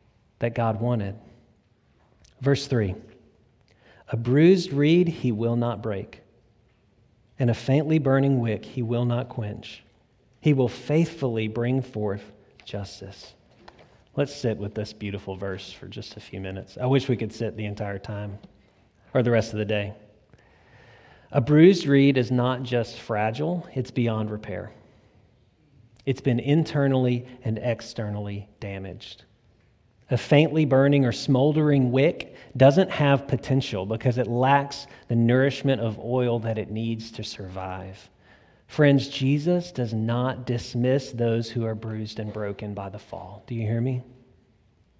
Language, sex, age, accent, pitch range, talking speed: English, male, 40-59, American, 110-130 Hz, 145 wpm